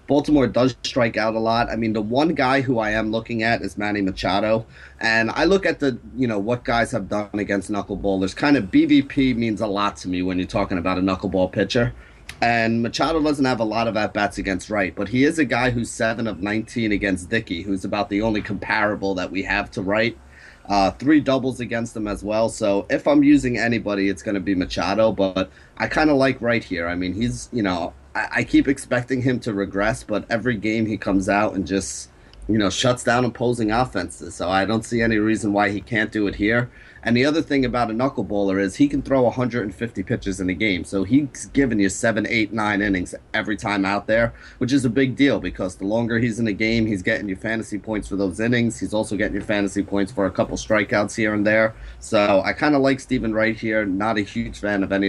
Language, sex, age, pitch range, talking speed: English, male, 30-49, 100-120 Hz, 235 wpm